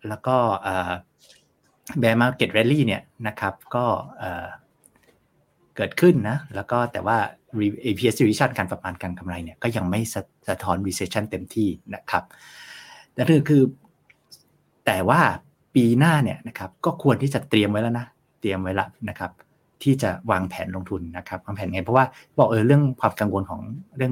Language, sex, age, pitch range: Thai, male, 60-79, 95-130 Hz